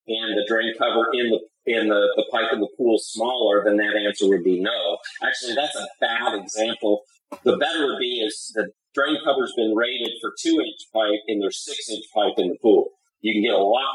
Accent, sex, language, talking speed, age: American, male, English, 230 wpm, 40-59